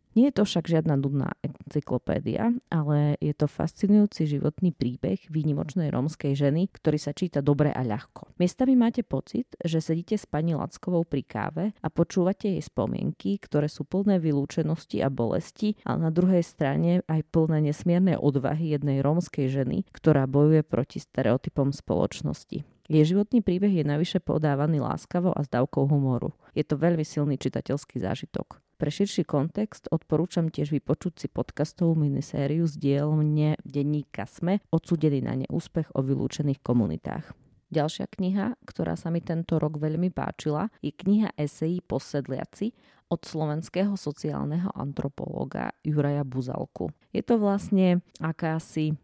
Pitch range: 145-180 Hz